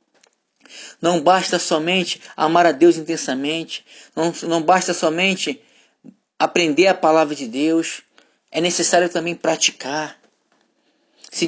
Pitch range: 165-200 Hz